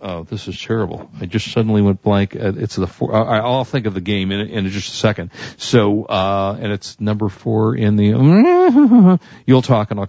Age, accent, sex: 50-69, American, male